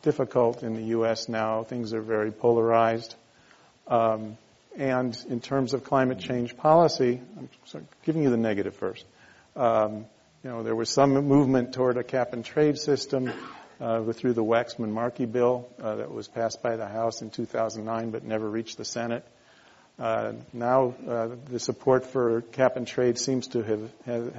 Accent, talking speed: American, 170 wpm